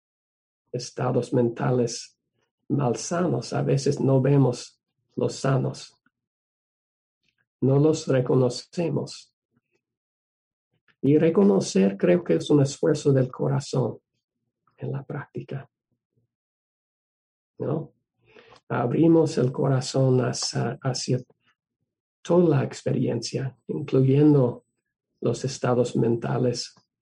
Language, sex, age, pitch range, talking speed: English, male, 50-69, 125-140 Hz, 85 wpm